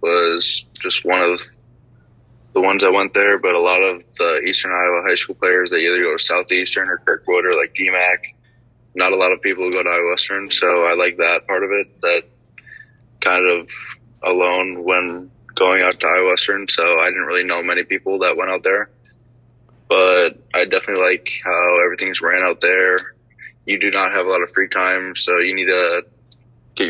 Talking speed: 200 wpm